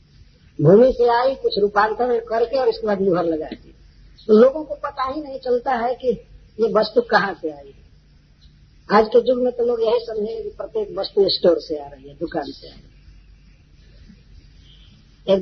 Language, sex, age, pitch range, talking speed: Hindi, female, 50-69, 170-235 Hz, 190 wpm